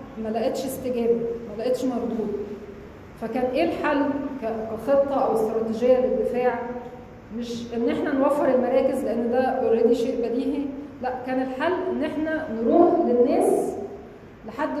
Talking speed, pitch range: 120 wpm, 230-260 Hz